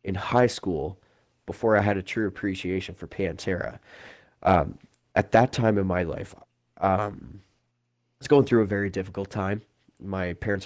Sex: male